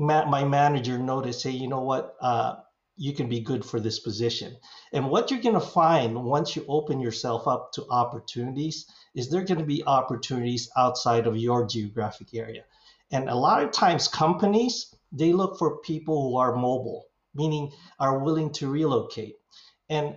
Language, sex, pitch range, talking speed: English, male, 125-155 Hz, 170 wpm